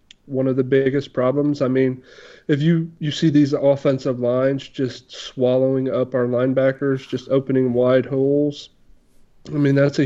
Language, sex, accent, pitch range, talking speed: English, male, American, 130-160 Hz, 160 wpm